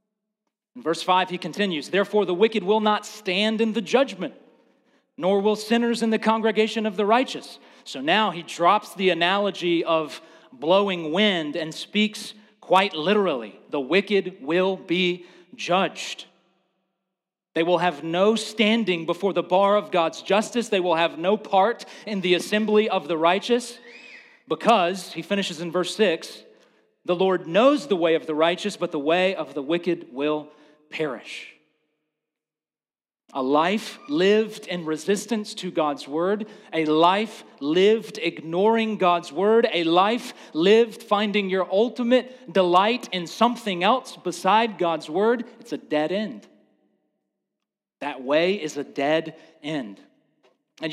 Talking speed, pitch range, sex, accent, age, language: 145 wpm, 170-220 Hz, male, American, 40-59, English